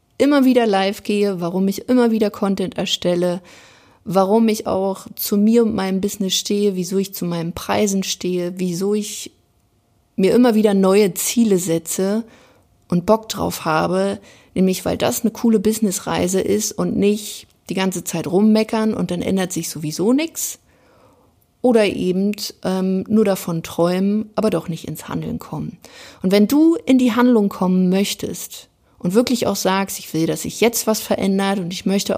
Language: German